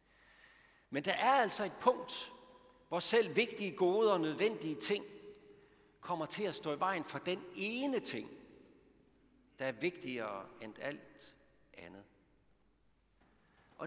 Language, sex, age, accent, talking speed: Danish, male, 60-79, native, 130 wpm